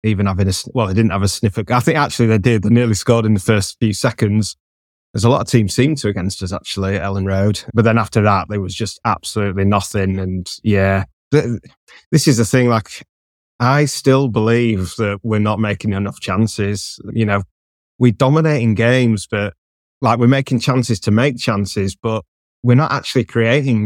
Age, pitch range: 20-39, 100-120 Hz